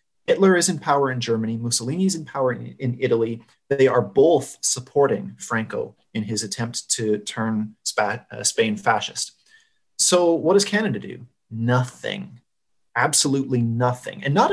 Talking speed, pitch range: 140 wpm, 120-195 Hz